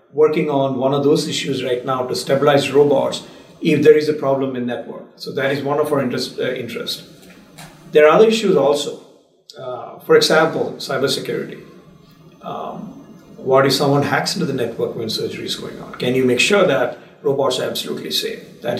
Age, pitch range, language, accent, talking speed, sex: 50-69, 135-175 Hz, English, Indian, 190 wpm, male